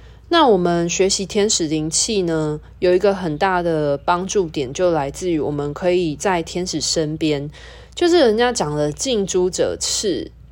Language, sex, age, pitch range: Chinese, female, 20-39, 150-195 Hz